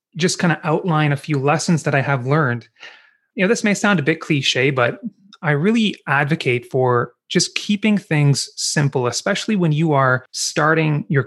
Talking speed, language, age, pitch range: 180 wpm, English, 30-49, 130-170 Hz